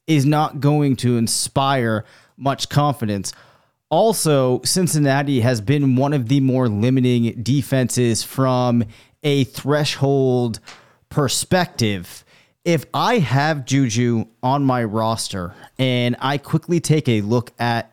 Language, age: English, 30-49